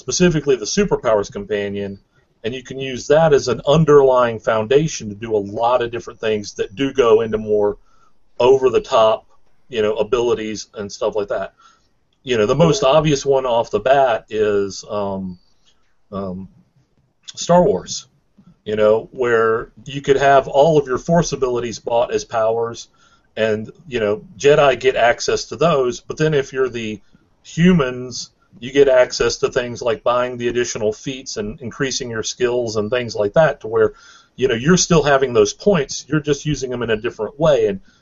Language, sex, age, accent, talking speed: English, male, 40-59, American, 175 wpm